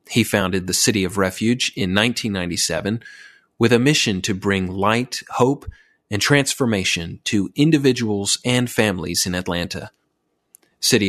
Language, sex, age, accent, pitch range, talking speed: English, male, 30-49, American, 100-125 Hz, 130 wpm